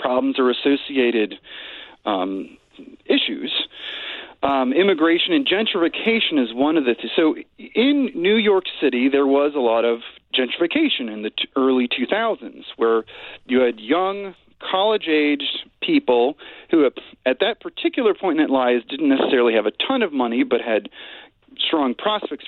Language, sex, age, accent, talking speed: English, male, 40-59, American, 140 wpm